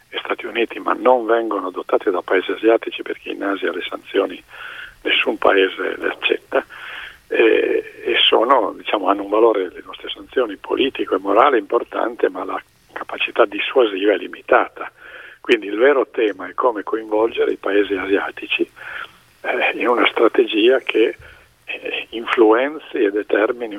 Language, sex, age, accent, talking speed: Italian, male, 50-69, native, 145 wpm